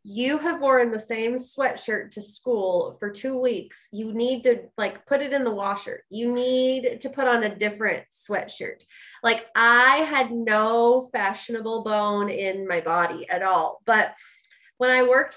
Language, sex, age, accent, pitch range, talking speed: English, female, 20-39, American, 205-265 Hz, 170 wpm